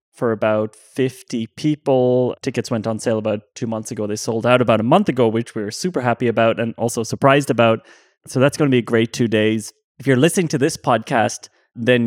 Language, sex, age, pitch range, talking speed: English, male, 20-39, 110-135 Hz, 225 wpm